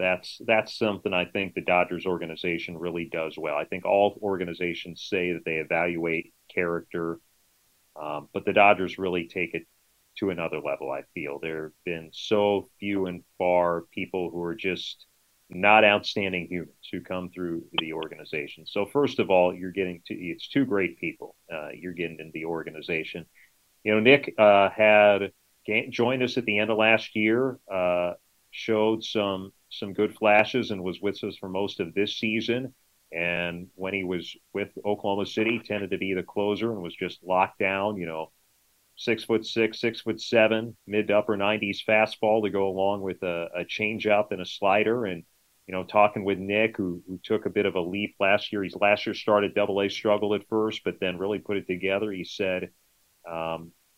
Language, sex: English, male